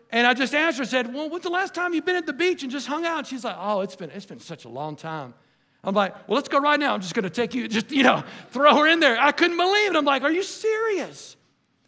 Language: English